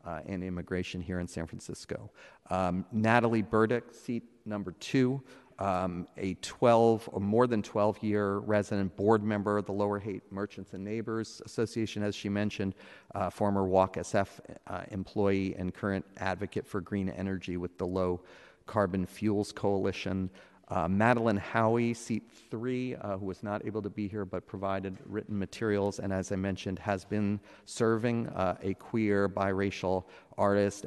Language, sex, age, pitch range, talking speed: English, male, 40-59, 95-110 Hz, 160 wpm